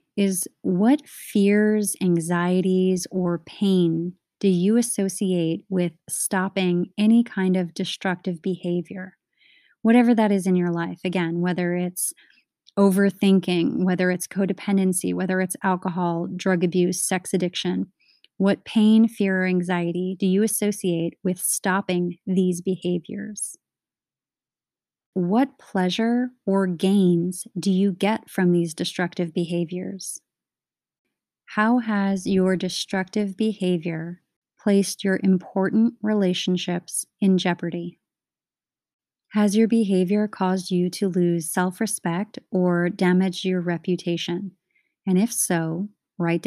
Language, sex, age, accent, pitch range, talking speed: English, female, 30-49, American, 175-200 Hz, 110 wpm